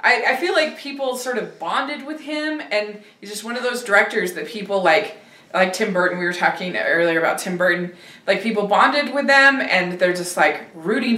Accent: American